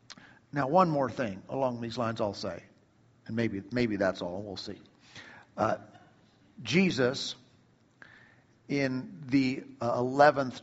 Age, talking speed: 50-69, 120 wpm